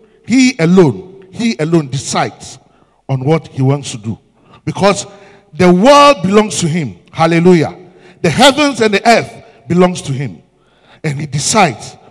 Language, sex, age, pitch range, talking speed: English, male, 50-69, 150-220 Hz, 145 wpm